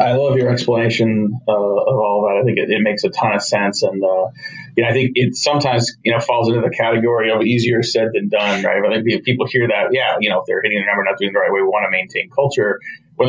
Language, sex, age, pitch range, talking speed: English, male, 30-49, 115-130 Hz, 285 wpm